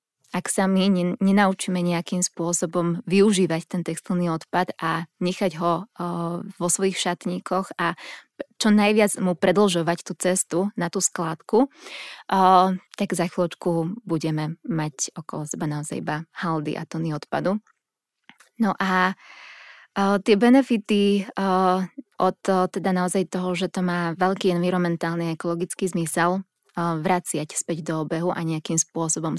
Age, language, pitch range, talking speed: 20-39, Slovak, 170-190 Hz, 125 wpm